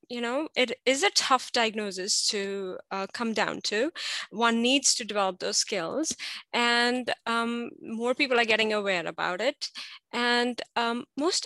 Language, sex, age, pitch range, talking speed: English, female, 20-39, 205-260 Hz, 155 wpm